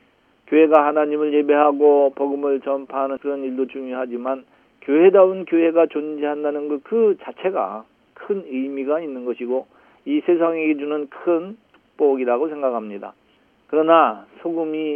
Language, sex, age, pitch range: Korean, male, 40-59, 130-160 Hz